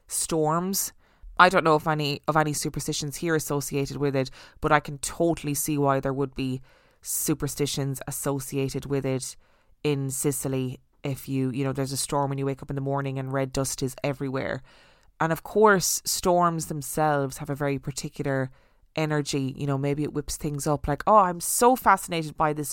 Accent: Irish